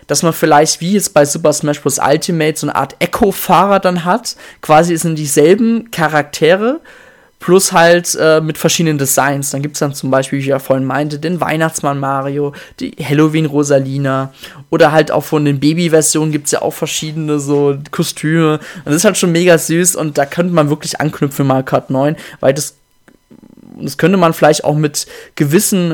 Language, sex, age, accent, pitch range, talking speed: German, male, 20-39, German, 145-175 Hz, 185 wpm